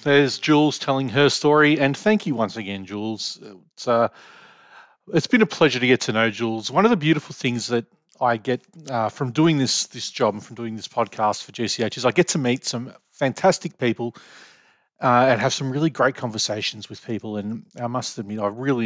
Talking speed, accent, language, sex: 210 wpm, Australian, English, male